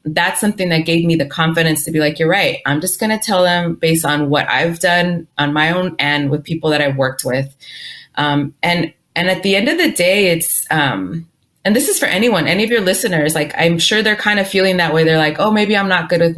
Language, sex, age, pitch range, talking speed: English, female, 30-49, 150-180 Hz, 255 wpm